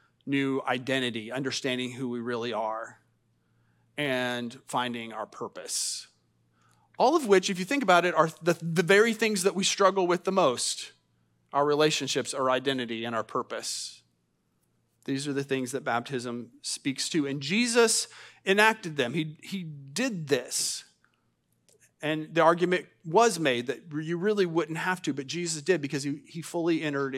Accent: American